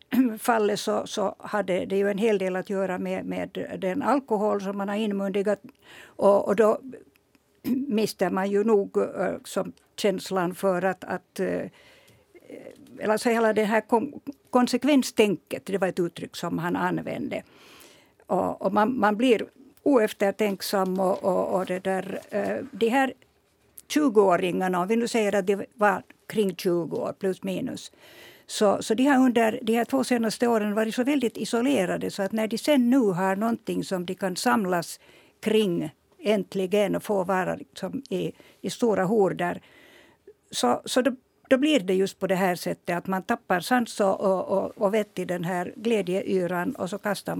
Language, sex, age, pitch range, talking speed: Swedish, female, 60-79, 190-235 Hz, 170 wpm